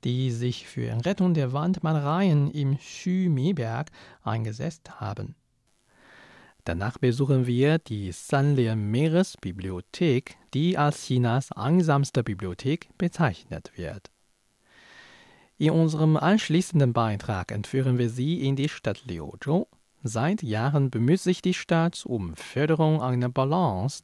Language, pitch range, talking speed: German, 110-165 Hz, 110 wpm